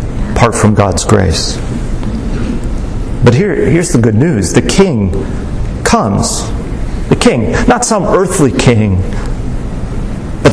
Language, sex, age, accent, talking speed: English, male, 40-59, American, 115 wpm